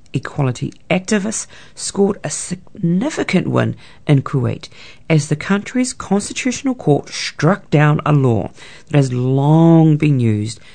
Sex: female